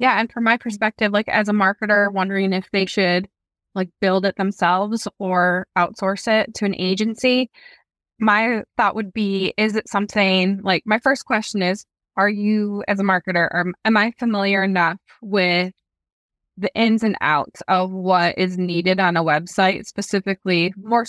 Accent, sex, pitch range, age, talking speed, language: American, female, 175-215 Hz, 20-39, 170 wpm, English